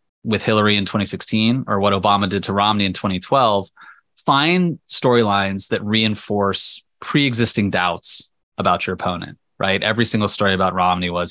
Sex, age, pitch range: male, 20-39, 95-125 Hz